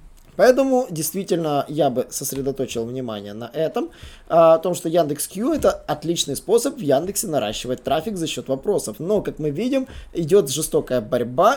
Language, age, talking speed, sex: Russian, 20-39, 155 wpm, male